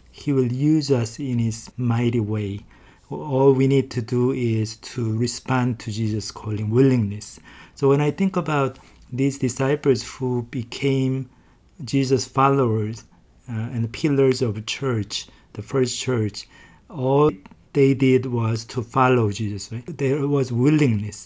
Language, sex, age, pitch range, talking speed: English, male, 50-69, 115-135 Hz, 140 wpm